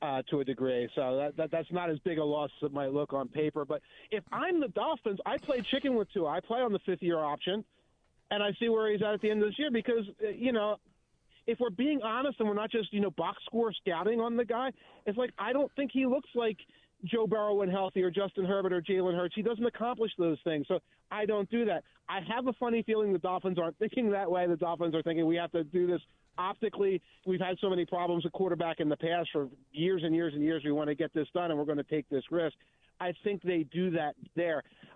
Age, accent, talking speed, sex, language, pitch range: 40-59, American, 260 wpm, male, English, 160-210 Hz